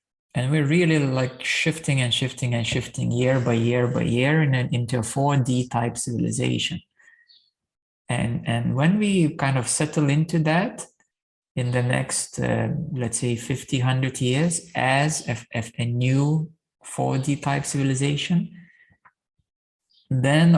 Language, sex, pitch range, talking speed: English, male, 120-150 Hz, 130 wpm